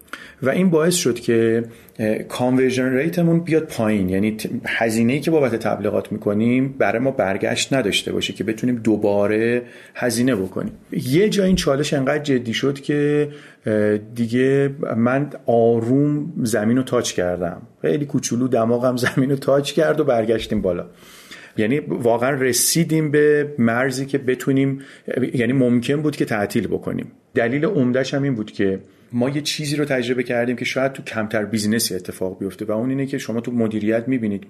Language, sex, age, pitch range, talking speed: Persian, male, 40-59, 110-140 Hz, 150 wpm